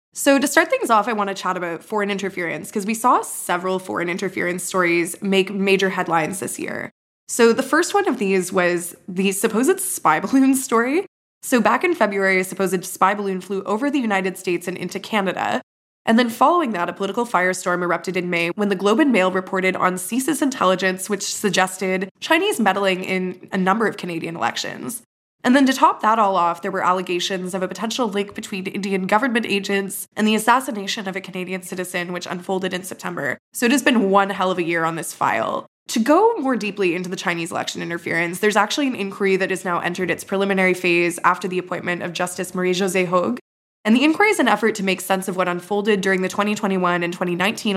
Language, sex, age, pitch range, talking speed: English, female, 20-39, 180-215 Hz, 210 wpm